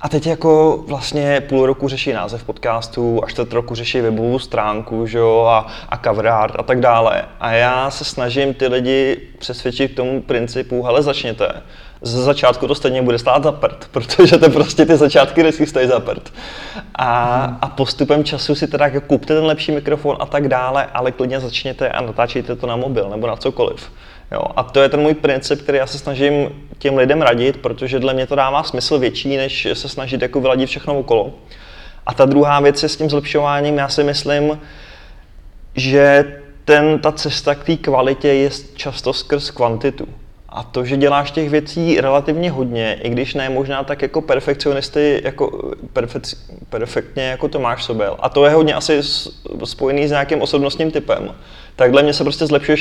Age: 20-39